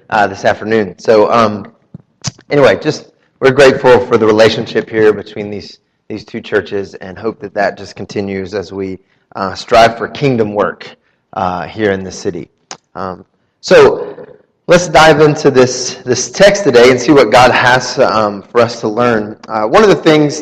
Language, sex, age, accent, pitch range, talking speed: English, male, 30-49, American, 115-165 Hz, 180 wpm